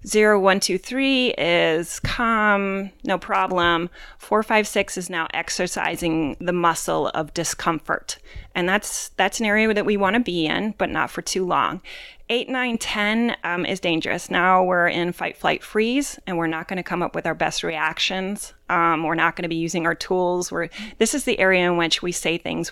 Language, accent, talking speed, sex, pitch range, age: English, American, 195 wpm, female, 170-205 Hz, 30-49